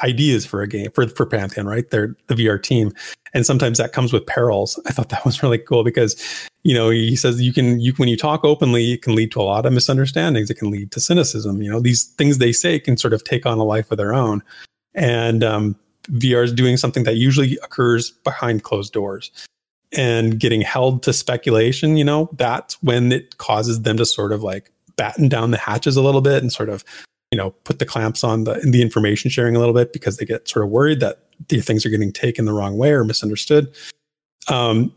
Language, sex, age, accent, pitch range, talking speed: English, male, 30-49, American, 110-135 Hz, 230 wpm